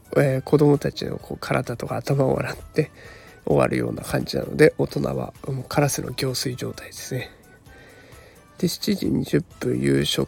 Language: Japanese